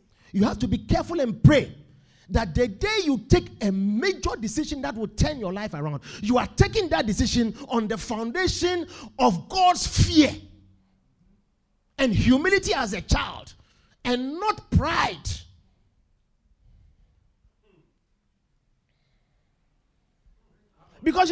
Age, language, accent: 50-69, English, Nigerian